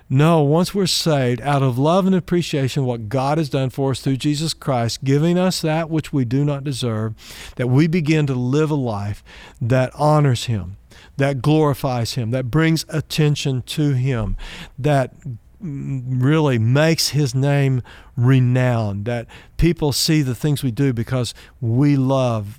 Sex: male